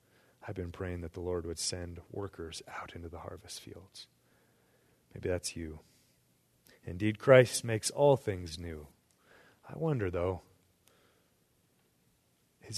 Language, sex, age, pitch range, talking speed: English, male, 30-49, 95-110 Hz, 125 wpm